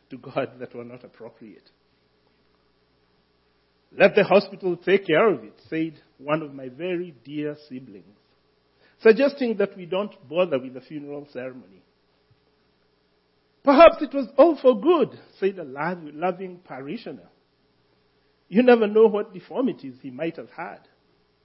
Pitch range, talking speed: 150-225 Hz, 135 wpm